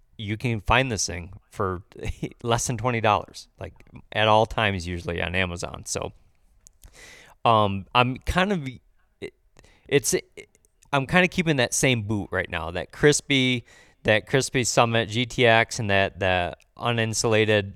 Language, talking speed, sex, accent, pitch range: English, 140 wpm, male, American, 95-120 Hz